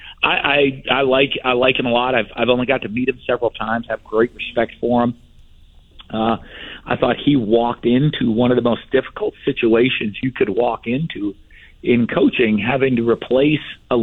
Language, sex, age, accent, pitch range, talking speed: English, male, 50-69, American, 115-140 Hz, 195 wpm